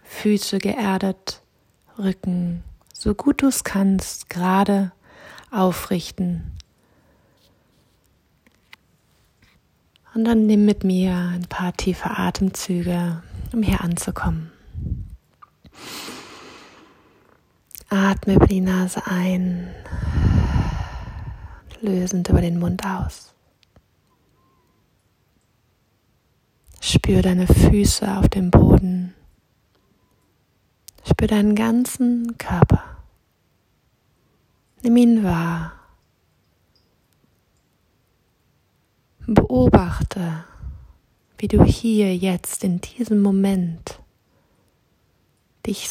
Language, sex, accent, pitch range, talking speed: German, female, German, 155-200 Hz, 70 wpm